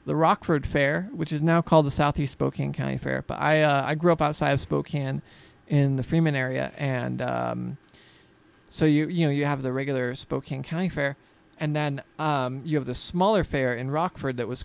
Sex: male